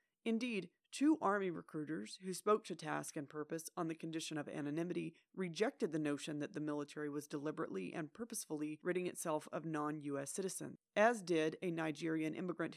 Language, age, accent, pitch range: English, 30-49, American, 155-205 Hz